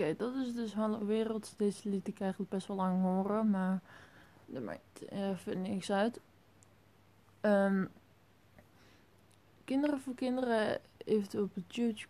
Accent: Dutch